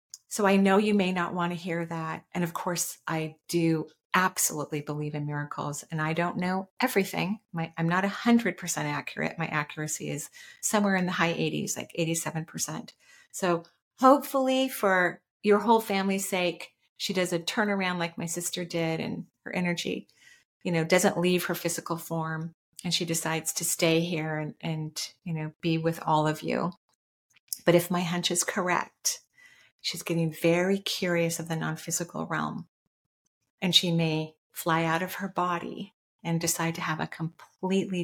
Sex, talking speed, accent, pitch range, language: female, 170 wpm, American, 160-185 Hz, English